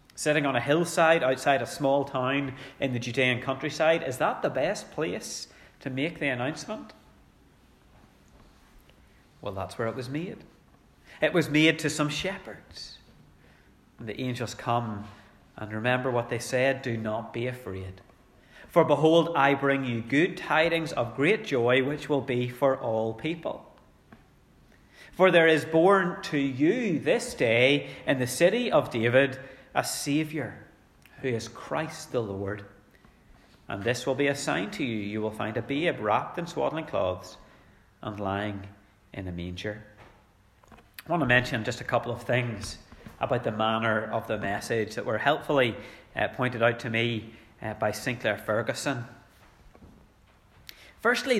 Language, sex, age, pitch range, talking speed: English, male, 30-49, 105-140 Hz, 155 wpm